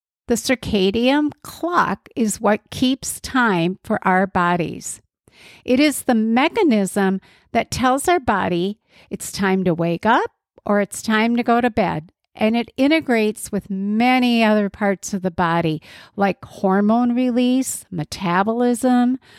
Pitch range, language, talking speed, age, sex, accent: 195-255 Hz, English, 135 wpm, 50-69, female, American